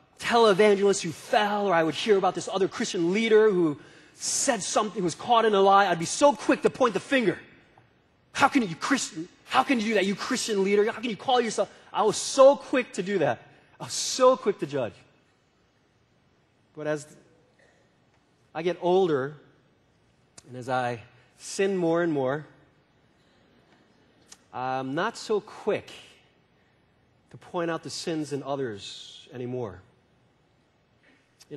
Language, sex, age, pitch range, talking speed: English, male, 30-49, 145-210 Hz, 160 wpm